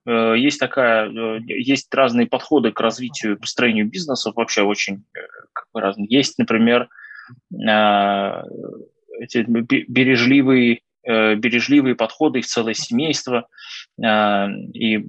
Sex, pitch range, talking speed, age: male, 110-135 Hz, 90 wpm, 20-39